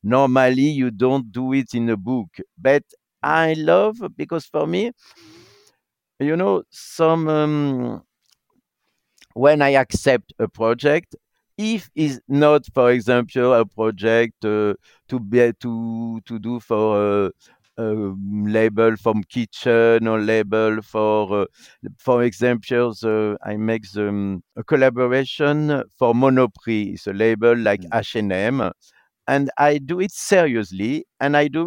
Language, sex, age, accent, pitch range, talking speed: English, male, 60-79, French, 110-150 Hz, 130 wpm